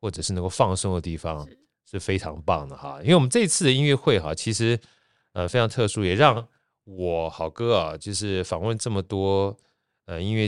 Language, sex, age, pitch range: Chinese, male, 30-49, 90-120 Hz